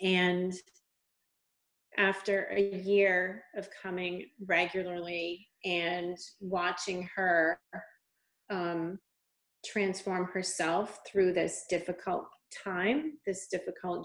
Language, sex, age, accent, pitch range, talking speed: English, female, 30-49, American, 175-200 Hz, 80 wpm